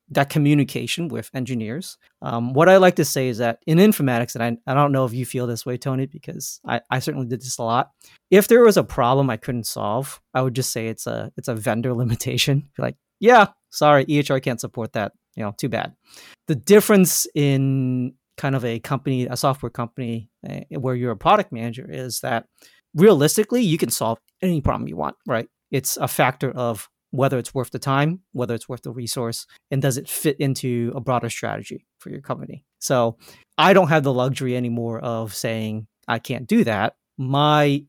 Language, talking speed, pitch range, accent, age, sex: English, 200 wpm, 120-145 Hz, American, 30-49, male